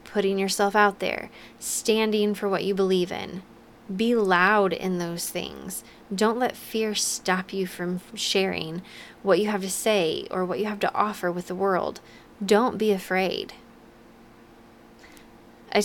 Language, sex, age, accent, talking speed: English, female, 20-39, American, 150 wpm